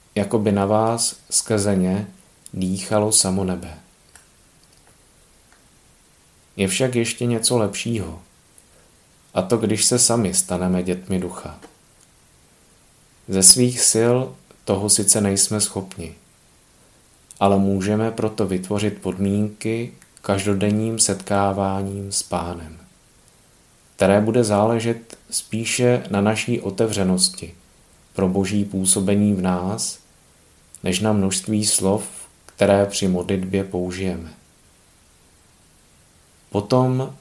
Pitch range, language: 95-110 Hz, Czech